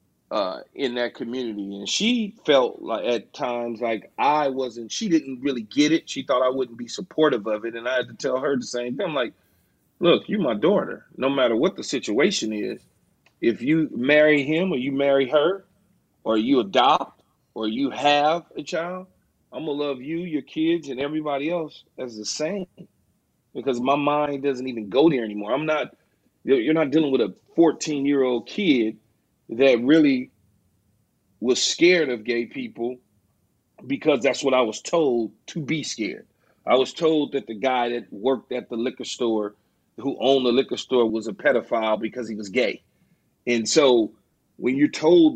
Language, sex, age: English, male, 30-49